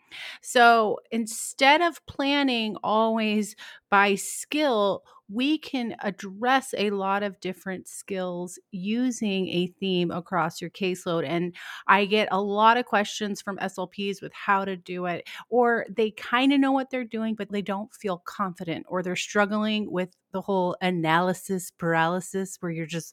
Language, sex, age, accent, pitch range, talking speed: English, female, 30-49, American, 180-225 Hz, 155 wpm